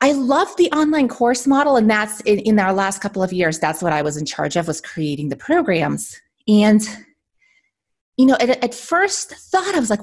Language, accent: English, American